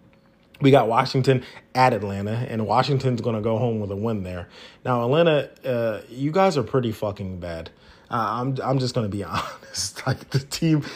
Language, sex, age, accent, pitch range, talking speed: English, male, 30-49, American, 105-125 Hz, 180 wpm